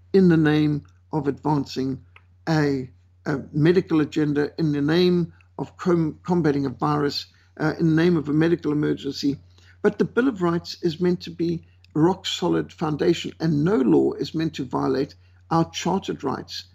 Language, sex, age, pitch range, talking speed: English, male, 60-79, 135-175 Hz, 165 wpm